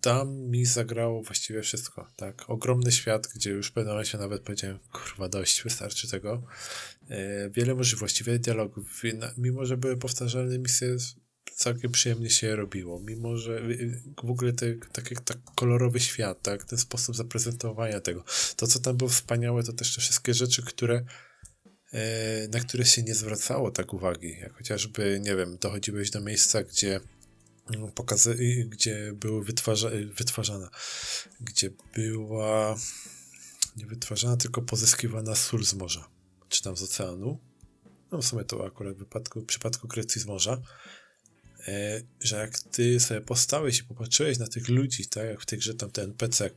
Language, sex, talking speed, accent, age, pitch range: Polish, male, 160 wpm, native, 20-39, 105-120 Hz